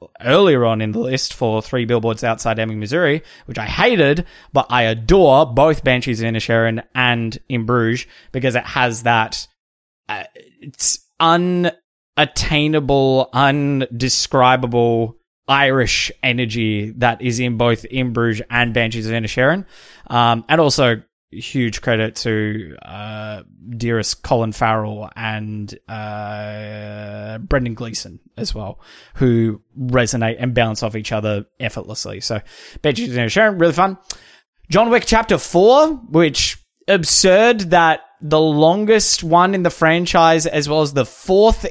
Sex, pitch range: male, 115-160 Hz